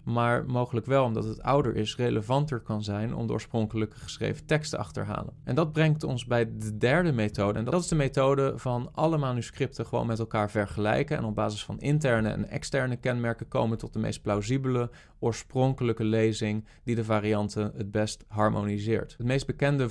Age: 20-39